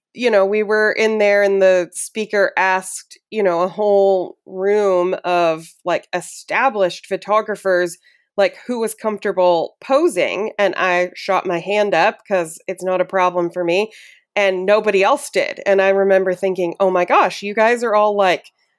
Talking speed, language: 170 wpm, English